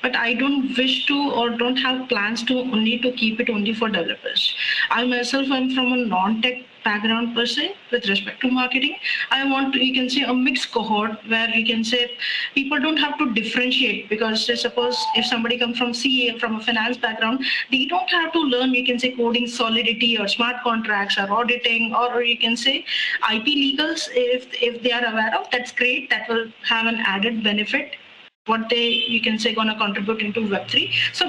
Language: English